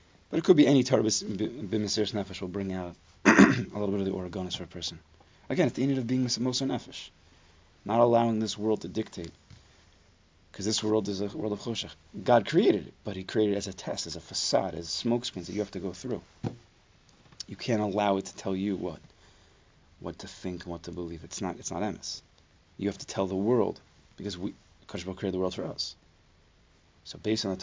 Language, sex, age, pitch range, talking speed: English, male, 30-49, 85-110 Hz, 215 wpm